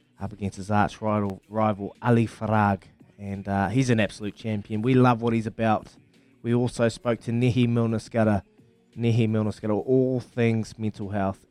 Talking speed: 160 wpm